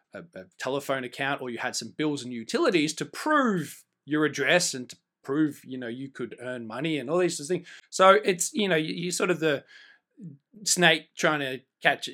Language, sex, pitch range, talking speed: English, male, 135-180 Hz, 215 wpm